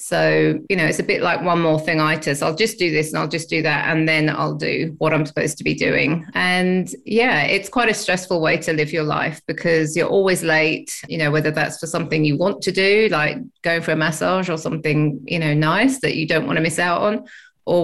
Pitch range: 155-185 Hz